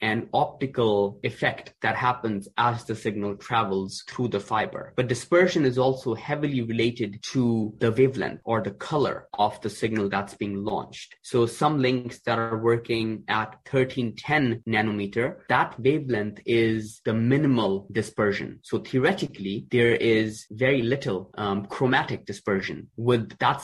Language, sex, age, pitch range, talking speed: English, male, 20-39, 110-130 Hz, 140 wpm